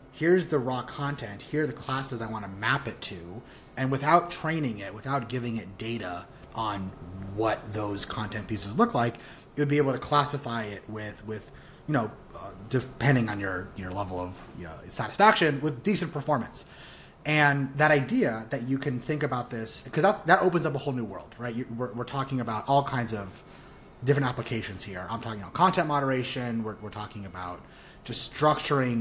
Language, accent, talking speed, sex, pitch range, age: English, American, 190 wpm, male, 105-145 Hz, 30-49